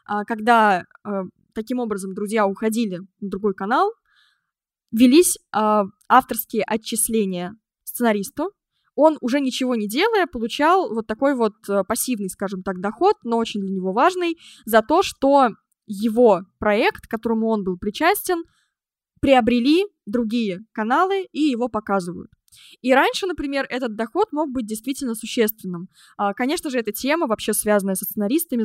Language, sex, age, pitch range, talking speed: Russian, female, 20-39, 210-270 Hz, 130 wpm